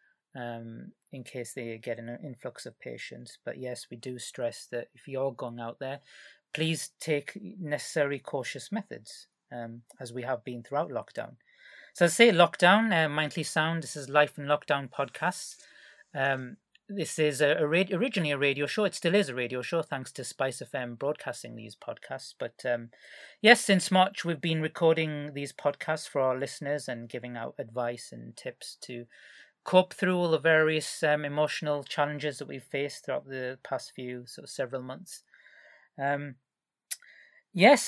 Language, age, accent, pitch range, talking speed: English, 30-49, British, 130-170 Hz, 175 wpm